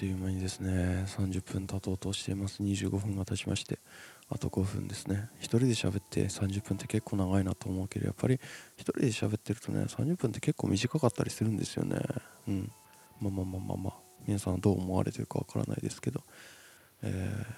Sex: male